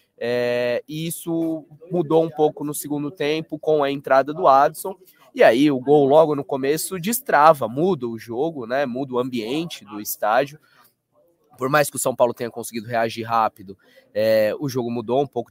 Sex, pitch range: male, 125-155 Hz